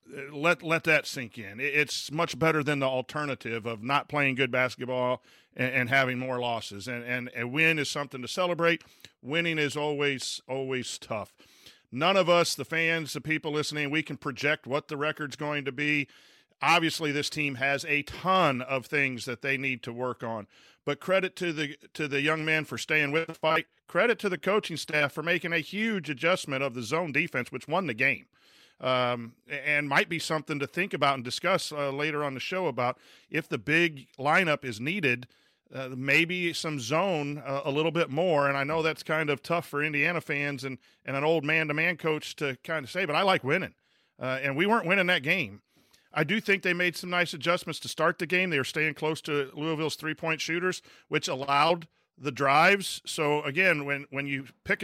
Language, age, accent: English, 40-59, American